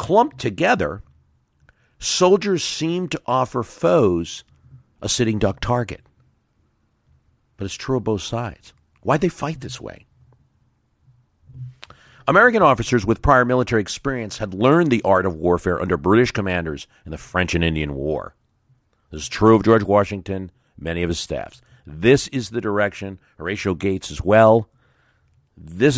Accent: American